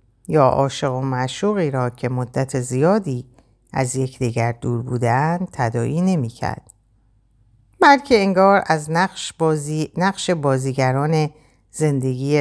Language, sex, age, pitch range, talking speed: Persian, female, 50-69, 120-155 Hz, 100 wpm